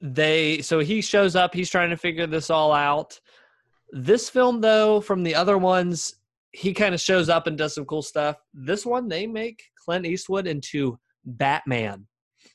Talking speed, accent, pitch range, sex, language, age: 175 wpm, American, 135-180 Hz, male, English, 20-39